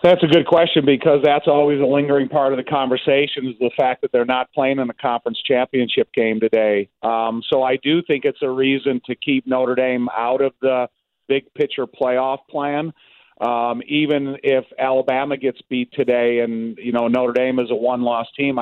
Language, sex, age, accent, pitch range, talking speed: English, male, 40-59, American, 120-135 Hz, 200 wpm